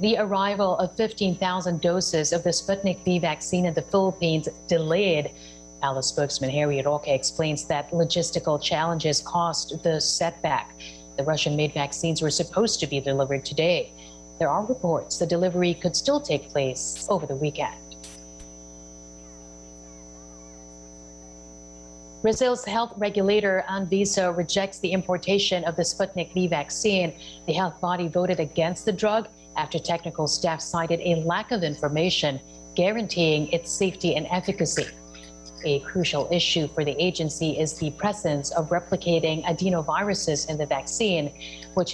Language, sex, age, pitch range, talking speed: English, female, 40-59, 145-180 Hz, 135 wpm